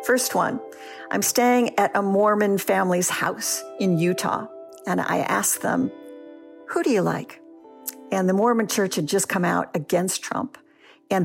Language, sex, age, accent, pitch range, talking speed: English, female, 50-69, American, 185-270 Hz, 160 wpm